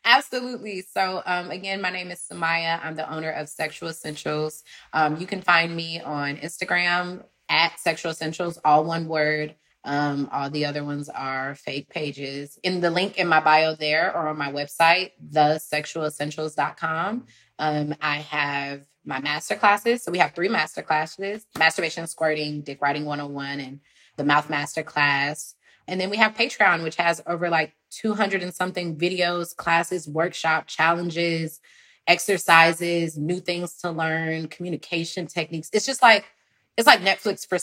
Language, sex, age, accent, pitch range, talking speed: English, female, 20-39, American, 150-180 Hz, 155 wpm